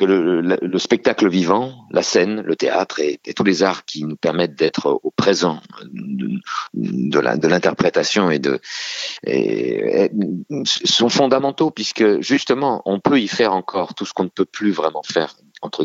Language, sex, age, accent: French, male, 50-69, French